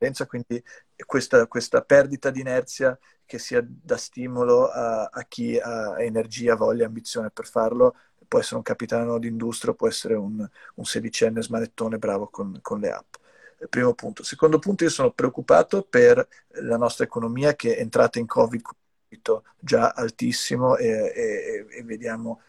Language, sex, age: Italian, male, 40-59